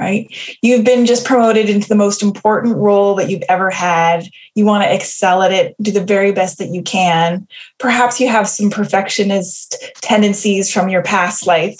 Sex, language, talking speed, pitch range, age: female, English, 190 wpm, 195-250 Hz, 20-39